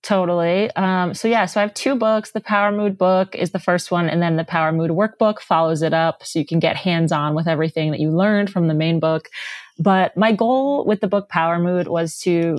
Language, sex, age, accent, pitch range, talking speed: English, female, 20-39, American, 160-190 Hz, 240 wpm